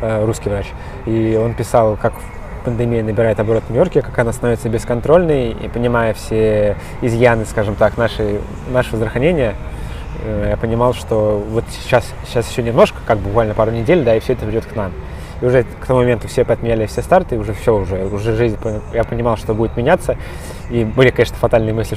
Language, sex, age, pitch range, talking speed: Russian, male, 20-39, 105-125 Hz, 185 wpm